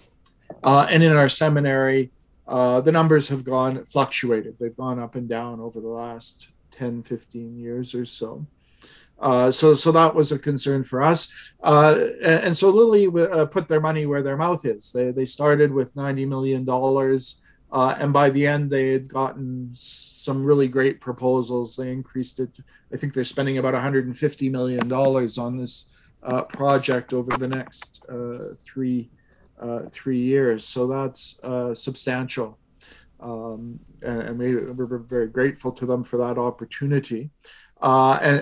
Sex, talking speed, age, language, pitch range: male, 165 wpm, 50-69, English, 125-145 Hz